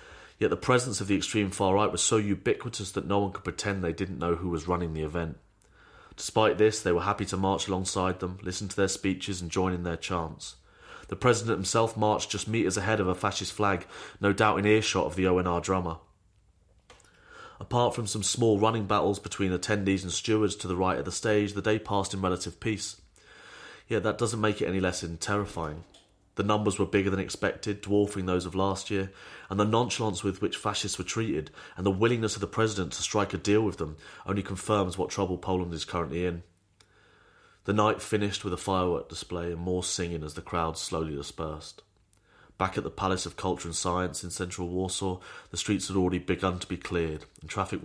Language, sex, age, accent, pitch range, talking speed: English, male, 30-49, British, 90-105 Hz, 205 wpm